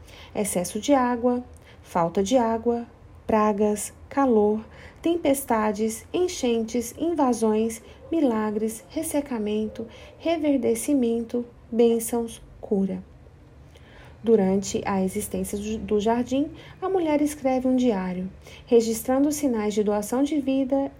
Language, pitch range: Portuguese, 220-280 Hz